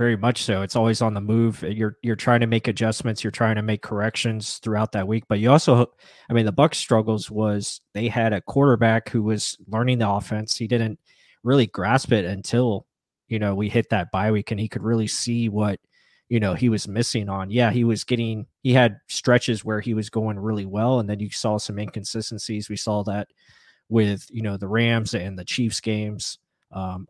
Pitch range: 105-115 Hz